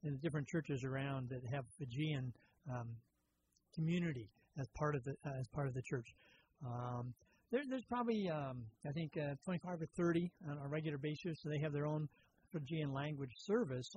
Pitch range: 135-160 Hz